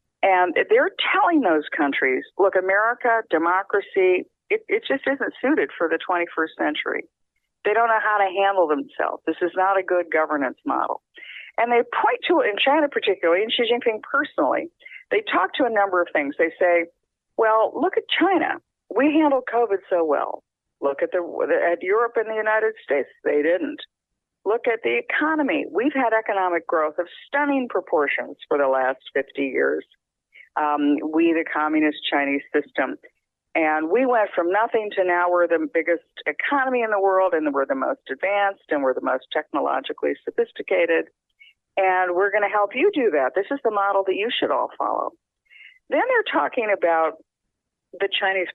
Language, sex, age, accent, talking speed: English, female, 50-69, American, 175 wpm